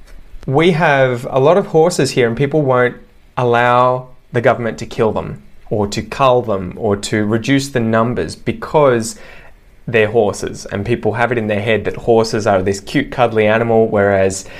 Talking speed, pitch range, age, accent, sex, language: 175 wpm, 105-125 Hz, 20-39, Australian, male, English